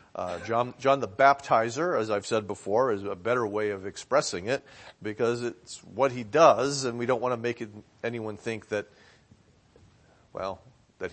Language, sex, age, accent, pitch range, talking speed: English, male, 40-59, American, 110-155 Hz, 180 wpm